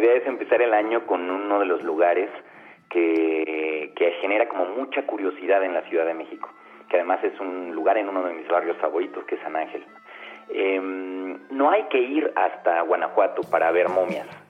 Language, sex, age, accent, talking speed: Spanish, male, 40-59, Mexican, 195 wpm